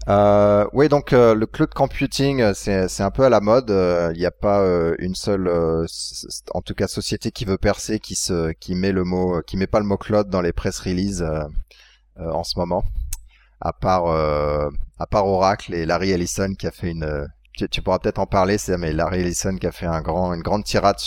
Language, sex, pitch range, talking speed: English, male, 85-110 Hz, 235 wpm